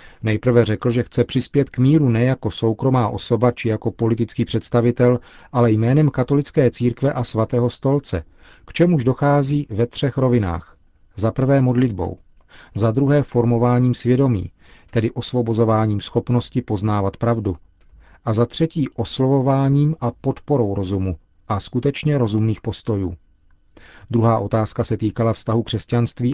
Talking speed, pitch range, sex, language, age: 130 wpm, 105-130 Hz, male, Czech, 40-59